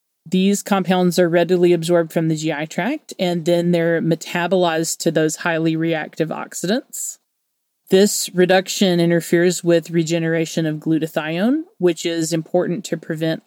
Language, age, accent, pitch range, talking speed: English, 30-49, American, 165-185 Hz, 135 wpm